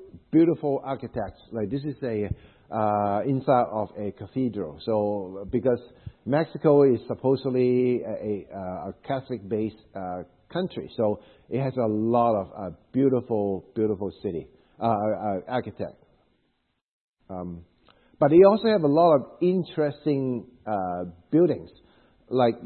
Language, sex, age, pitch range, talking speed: English, male, 50-69, 105-130 Hz, 125 wpm